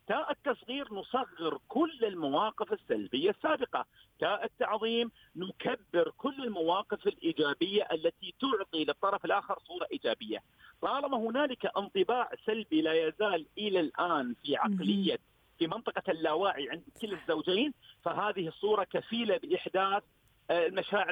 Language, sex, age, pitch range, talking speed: Arabic, male, 50-69, 185-255 Hz, 115 wpm